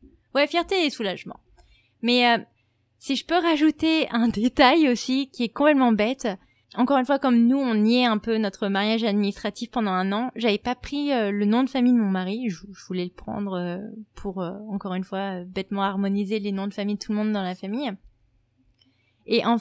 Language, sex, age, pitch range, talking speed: French, female, 20-39, 205-240 Hz, 215 wpm